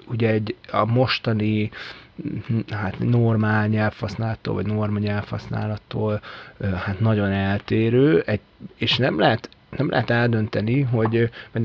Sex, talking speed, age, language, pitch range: male, 115 wpm, 20-39, Hungarian, 105-115 Hz